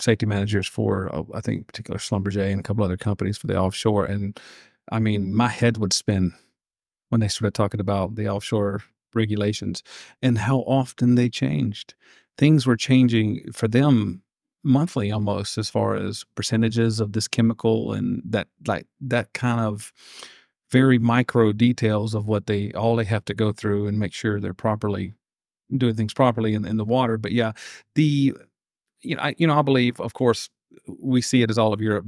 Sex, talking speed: male, 185 wpm